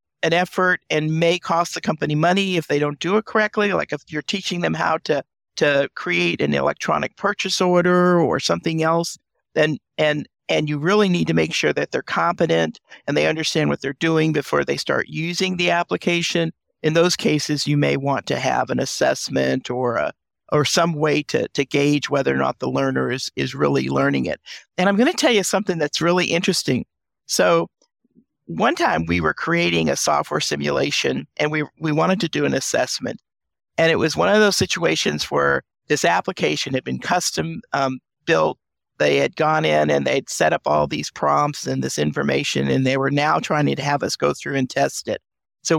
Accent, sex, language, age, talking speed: American, male, English, 50-69, 200 wpm